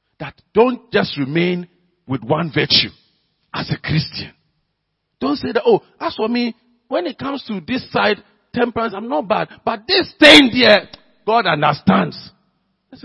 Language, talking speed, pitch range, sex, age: English, 155 wpm, 195-280 Hz, male, 50-69